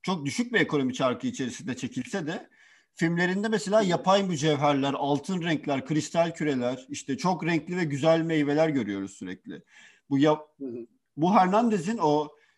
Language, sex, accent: Turkish, male, native